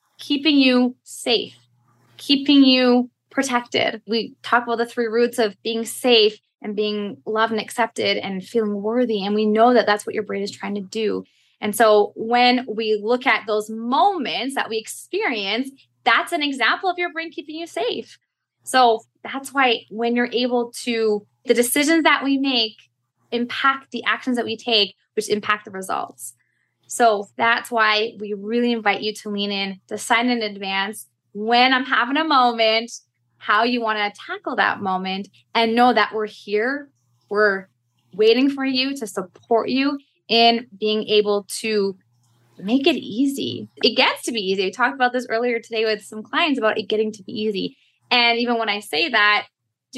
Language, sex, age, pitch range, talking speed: English, female, 20-39, 205-245 Hz, 180 wpm